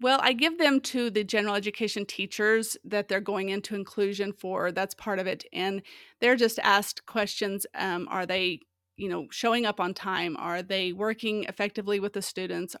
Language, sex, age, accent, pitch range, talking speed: English, female, 30-49, American, 185-210 Hz, 190 wpm